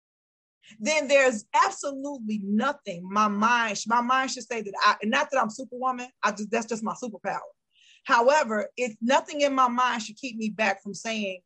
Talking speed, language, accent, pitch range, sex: 180 wpm, English, American, 195-245 Hz, female